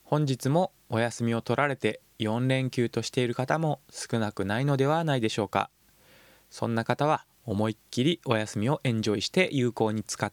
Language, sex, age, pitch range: Japanese, male, 20-39, 110-145 Hz